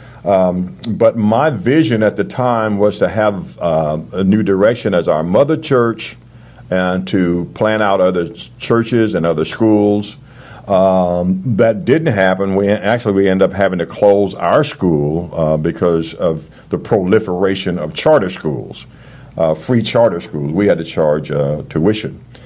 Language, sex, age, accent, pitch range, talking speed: English, male, 50-69, American, 90-125 Hz, 160 wpm